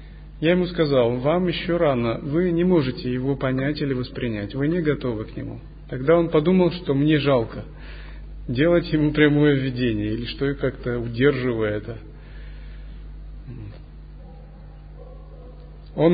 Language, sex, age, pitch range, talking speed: Russian, male, 30-49, 125-165 Hz, 130 wpm